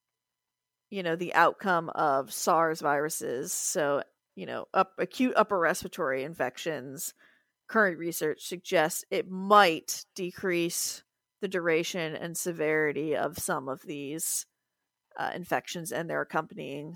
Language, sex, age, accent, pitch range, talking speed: English, female, 30-49, American, 175-210 Hz, 120 wpm